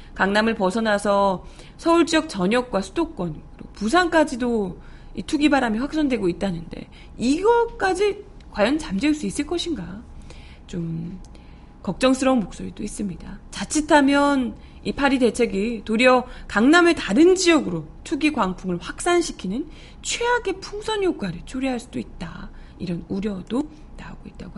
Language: Korean